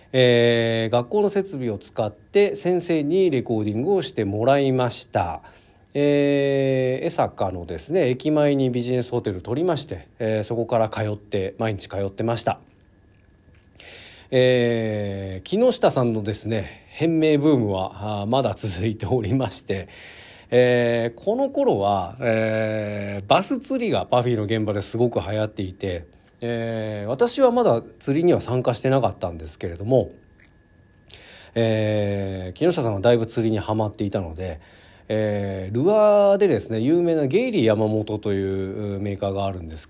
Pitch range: 100-125 Hz